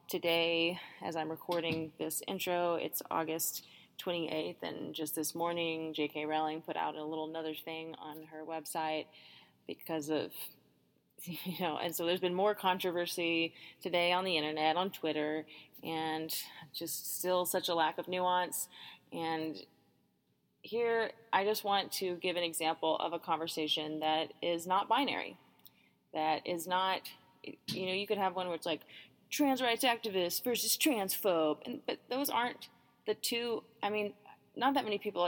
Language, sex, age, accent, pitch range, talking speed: English, female, 20-39, American, 155-185 Hz, 160 wpm